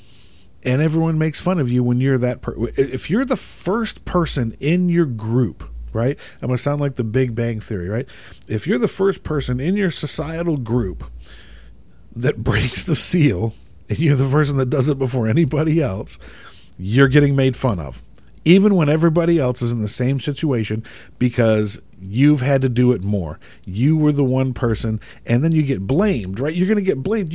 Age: 50-69